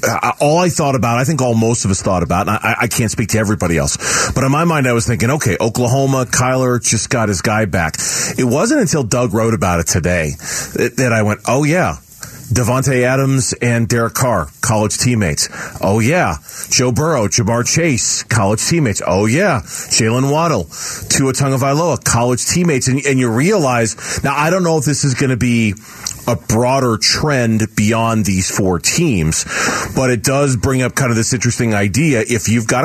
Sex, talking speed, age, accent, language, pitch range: male, 195 wpm, 40-59, American, English, 110-145 Hz